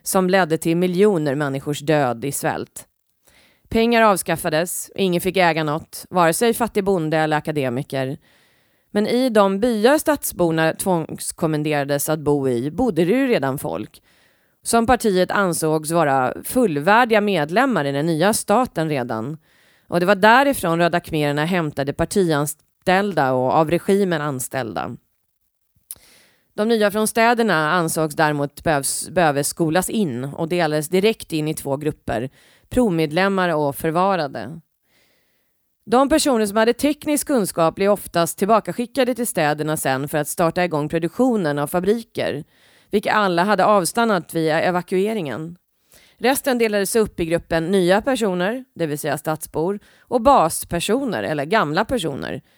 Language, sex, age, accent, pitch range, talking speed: Swedish, female, 30-49, native, 155-210 Hz, 130 wpm